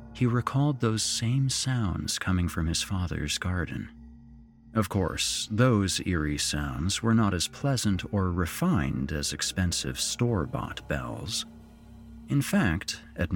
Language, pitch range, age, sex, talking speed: English, 80-115 Hz, 40-59, male, 125 wpm